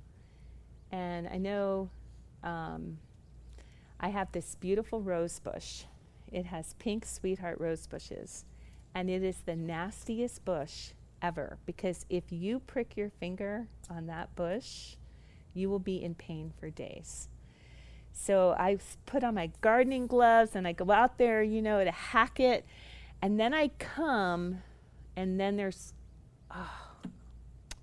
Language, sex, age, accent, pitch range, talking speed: English, female, 30-49, American, 150-200 Hz, 140 wpm